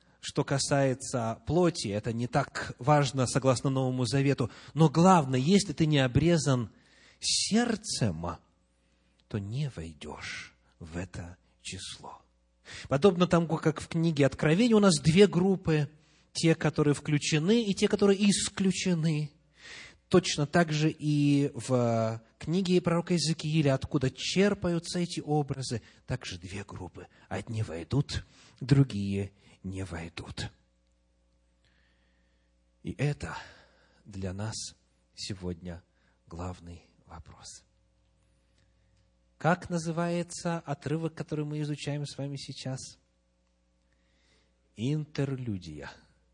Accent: native